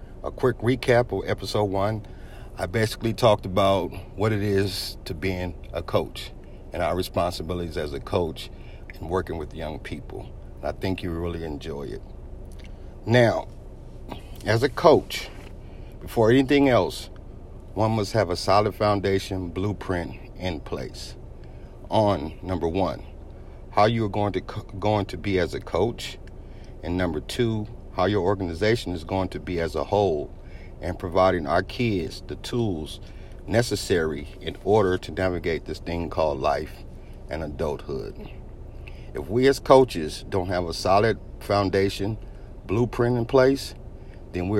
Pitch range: 90-105 Hz